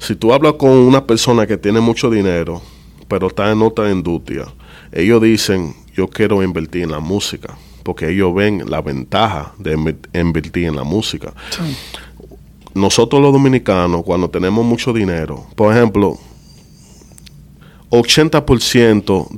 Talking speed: 135 wpm